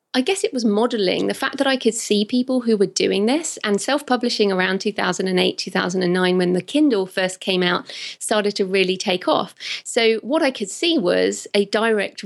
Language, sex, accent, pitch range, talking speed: English, female, British, 185-210 Hz, 225 wpm